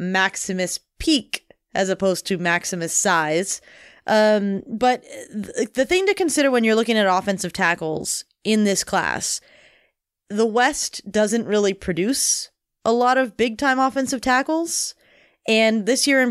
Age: 20-39